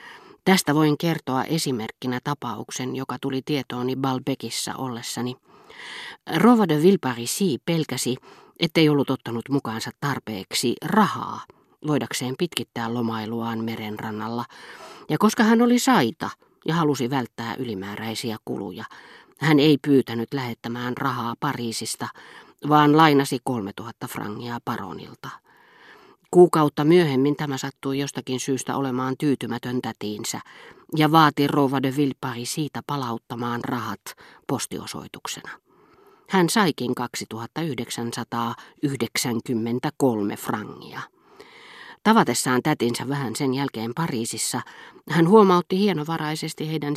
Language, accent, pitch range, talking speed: Finnish, native, 120-150 Hz, 95 wpm